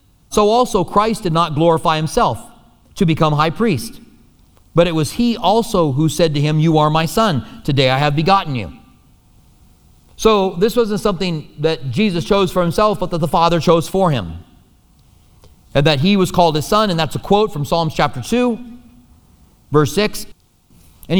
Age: 40-59